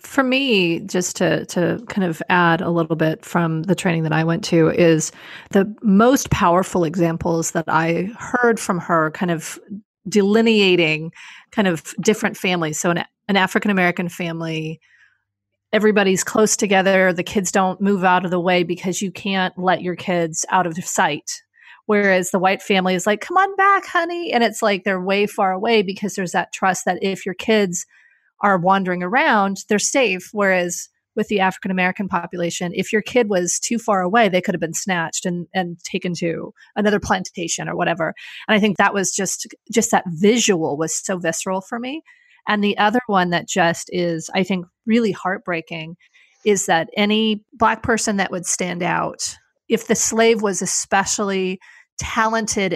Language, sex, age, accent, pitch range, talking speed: English, female, 30-49, American, 175-210 Hz, 175 wpm